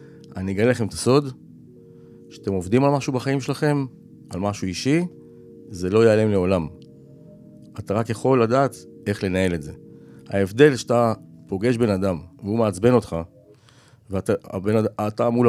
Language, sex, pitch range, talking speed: Hebrew, male, 90-135 Hz, 145 wpm